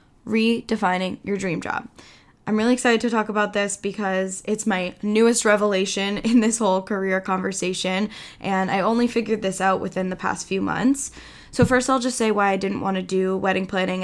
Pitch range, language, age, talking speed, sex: 195-230 Hz, English, 10-29, 190 wpm, female